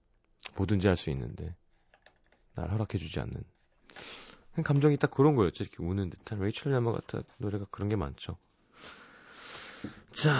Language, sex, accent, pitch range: Korean, male, native, 95-130 Hz